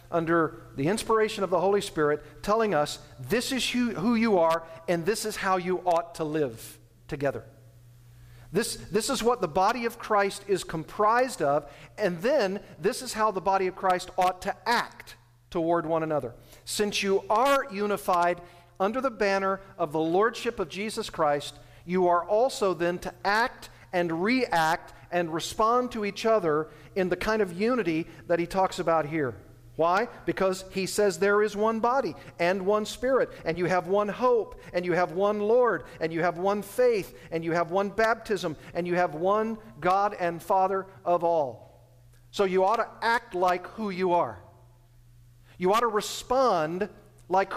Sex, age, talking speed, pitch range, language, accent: male, 50-69, 175 wpm, 160-210 Hz, English, American